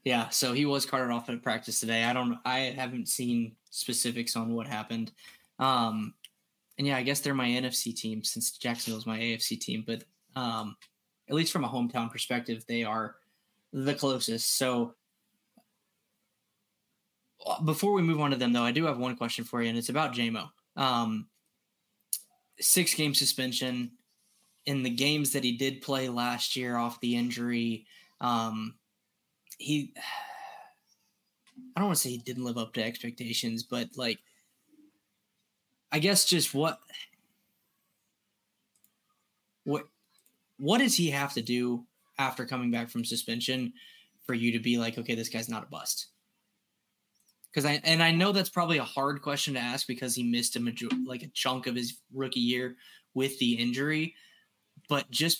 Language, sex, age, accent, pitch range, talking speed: English, male, 10-29, American, 120-140 Hz, 165 wpm